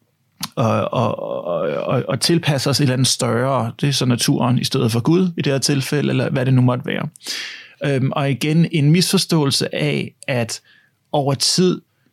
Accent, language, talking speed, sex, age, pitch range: native, Danish, 185 wpm, male, 30-49, 125-155 Hz